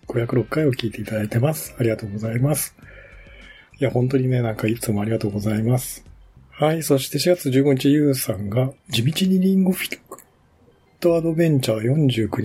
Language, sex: Japanese, male